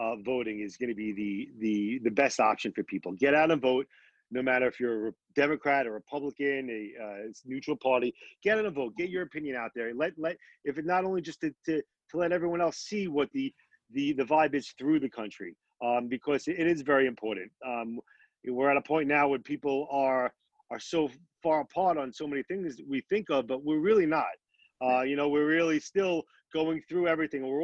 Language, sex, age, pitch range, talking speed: English, male, 40-59, 125-160 Hz, 225 wpm